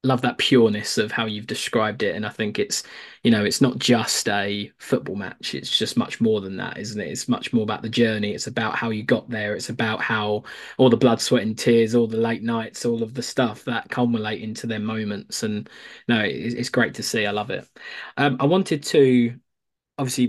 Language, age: English, 20-39